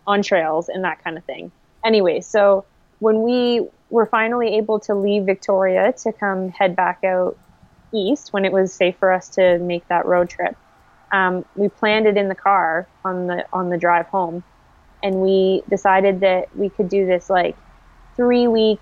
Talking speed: 185 wpm